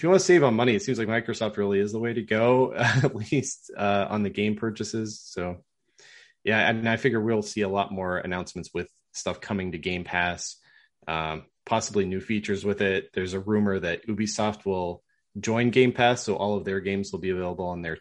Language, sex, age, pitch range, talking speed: English, male, 30-49, 90-115 Hz, 215 wpm